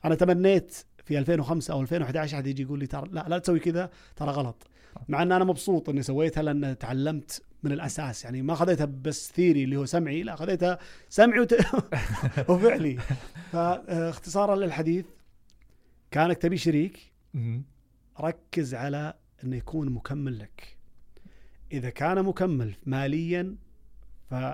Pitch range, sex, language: 130-170 Hz, male, Arabic